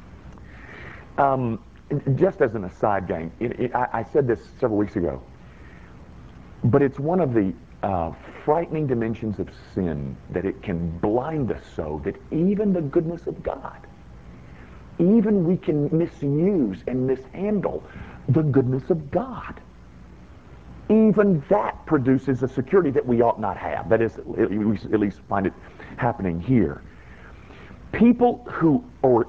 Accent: American